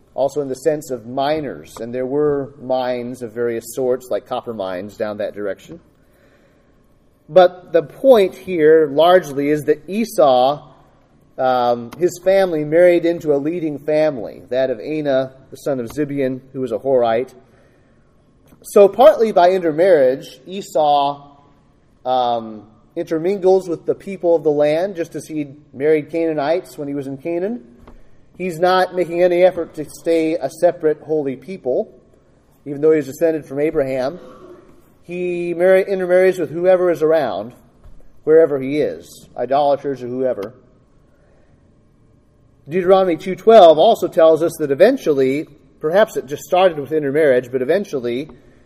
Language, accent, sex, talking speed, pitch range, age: English, American, male, 140 wpm, 135-175 Hz, 30-49